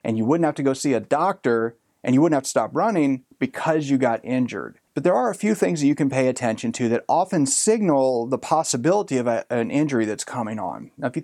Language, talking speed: English, 245 wpm